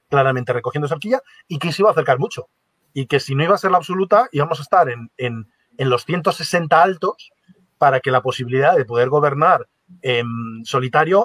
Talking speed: 195 wpm